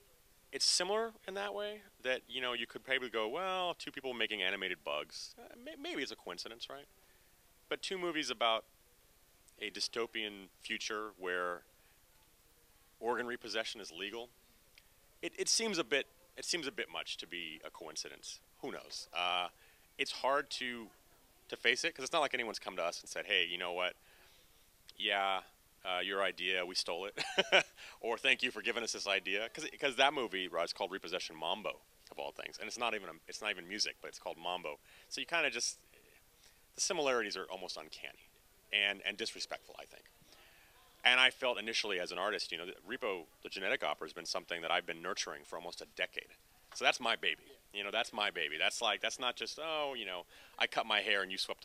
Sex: male